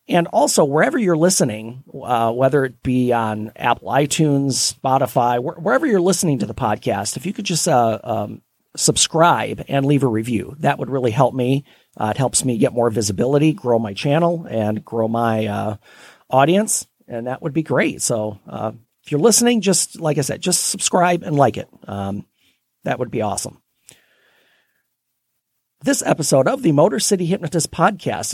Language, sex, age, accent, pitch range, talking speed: English, male, 40-59, American, 120-175 Hz, 175 wpm